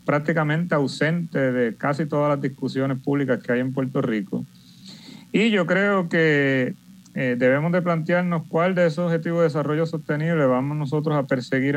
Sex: male